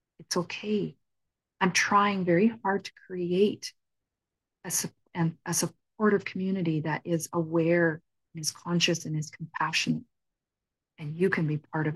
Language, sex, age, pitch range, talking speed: English, female, 40-59, 155-195 Hz, 135 wpm